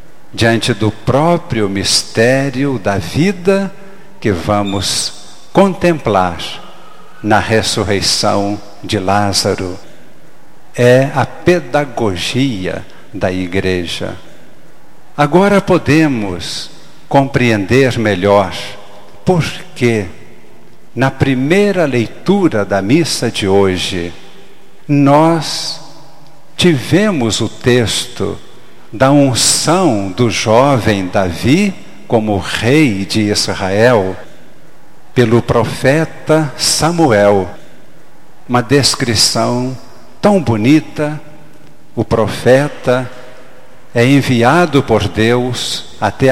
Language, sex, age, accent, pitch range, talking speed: Portuguese, male, 60-79, Brazilian, 105-150 Hz, 75 wpm